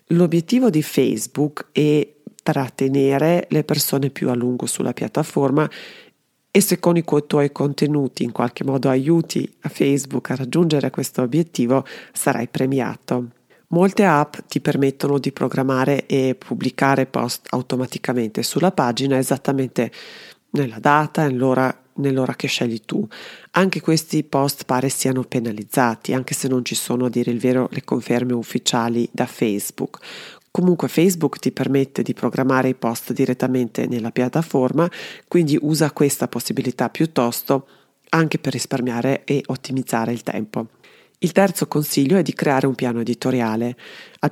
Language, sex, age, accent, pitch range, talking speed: Italian, female, 30-49, native, 125-150 Hz, 140 wpm